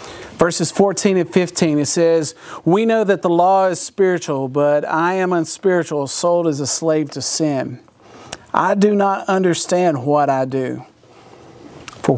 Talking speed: 155 wpm